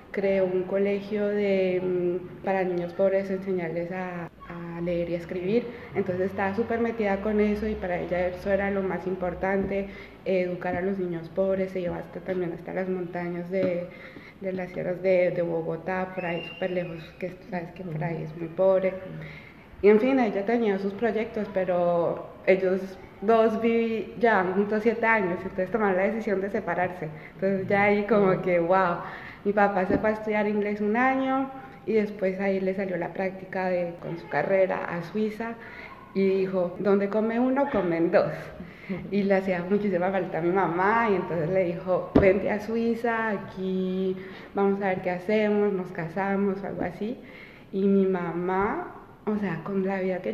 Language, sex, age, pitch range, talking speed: Spanish, female, 20-39, 180-205 Hz, 175 wpm